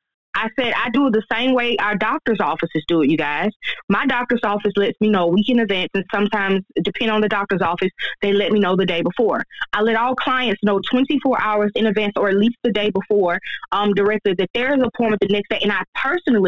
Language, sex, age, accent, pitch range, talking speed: English, female, 20-39, American, 190-225 Hz, 235 wpm